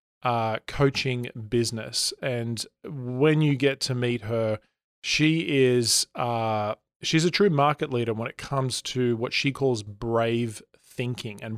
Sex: male